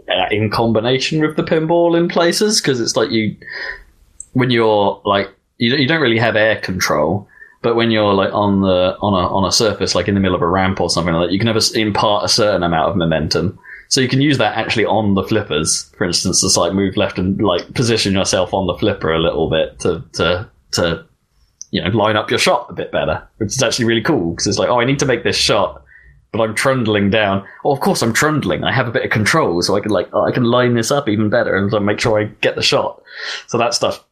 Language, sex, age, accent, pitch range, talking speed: English, male, 20-39, British, 100-135 Hz, 245 wpm